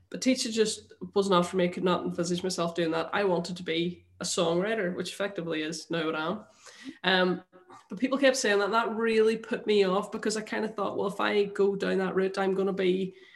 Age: 20-39